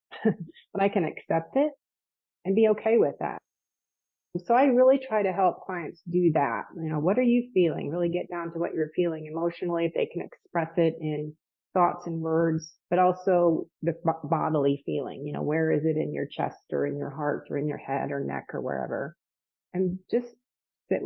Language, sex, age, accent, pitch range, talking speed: English, female, 30-49, American, 150-180 Hz, 200 wpm